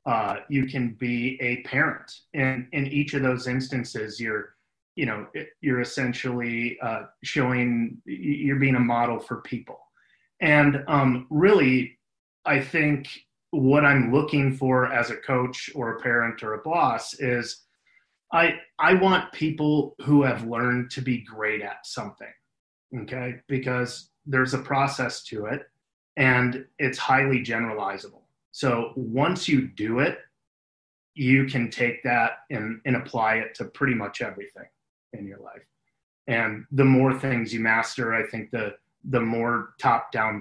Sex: male